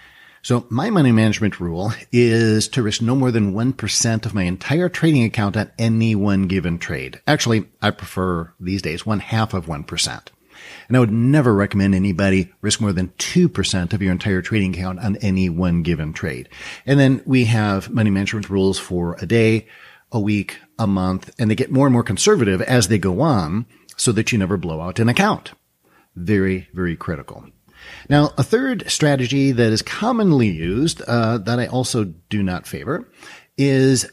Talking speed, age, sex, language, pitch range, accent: 180 wpm, 50-69, male, English, 95-130 Hz, American